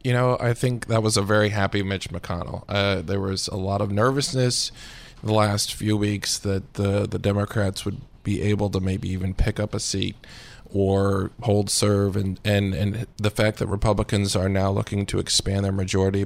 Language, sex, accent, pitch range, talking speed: English, male, American, 100-115 Hz, 195 wpm